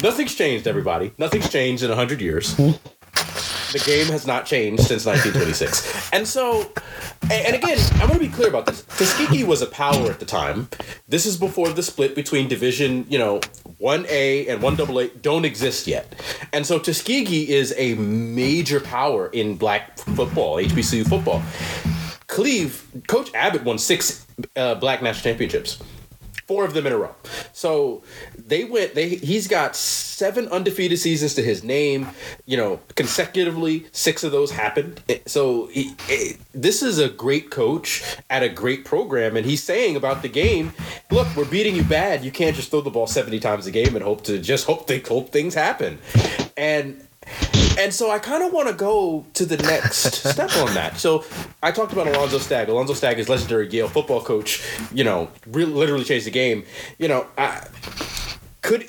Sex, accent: male, American